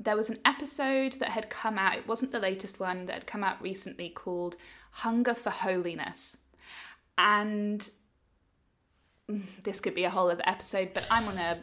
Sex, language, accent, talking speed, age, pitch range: female, English, British, 175 wpm, 20-39, 170-210 Hz